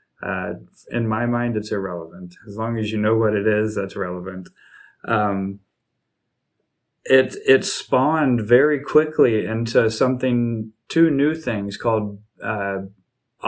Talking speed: 130 wpm